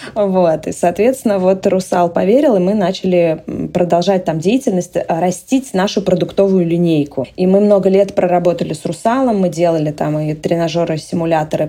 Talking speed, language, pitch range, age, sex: 150 wpm, Russian, 170-200 Hz, 20-39, female